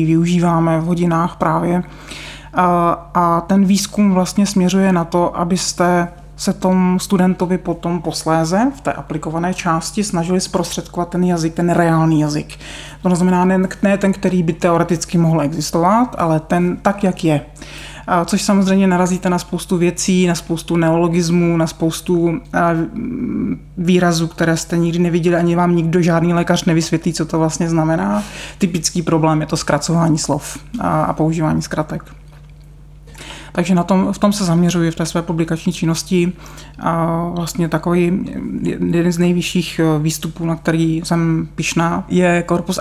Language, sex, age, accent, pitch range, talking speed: Czech, male, 30-49, native, 160-175 Hz, 145 wpm